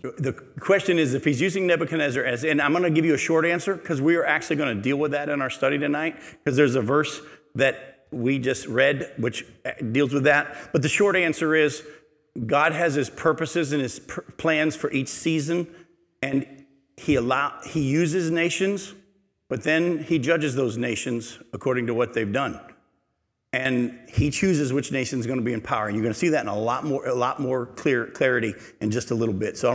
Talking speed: 220 wpm